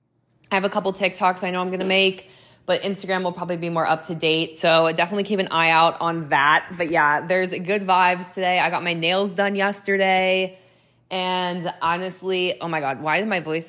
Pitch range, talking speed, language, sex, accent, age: 170-200 Hz, 220 wpm, English, female, American, 20-39